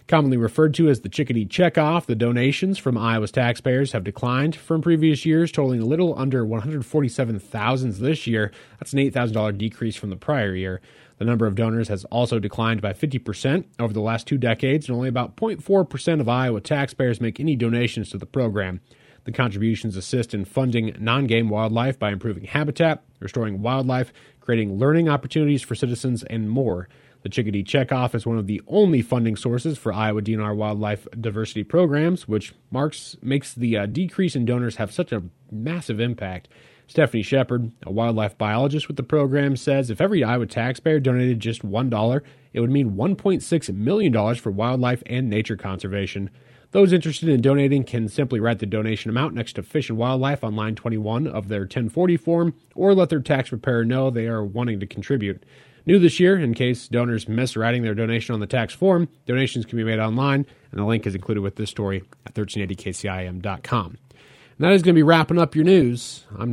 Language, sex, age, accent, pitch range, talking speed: English, male, 30-49, American, 110-140 Hz, 185 wpm